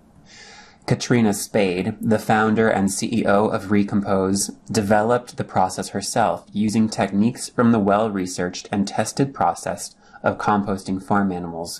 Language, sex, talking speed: English, male, 120 wpm